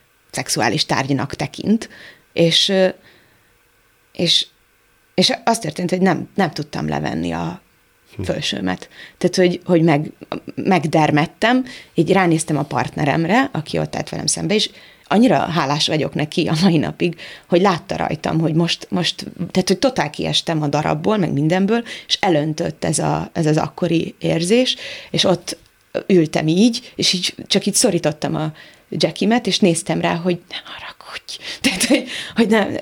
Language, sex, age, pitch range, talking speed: Hungarian, female, 30-49, 160-200 Hz, 145 wpm